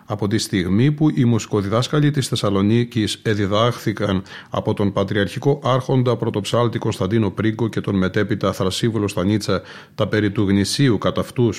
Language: Greek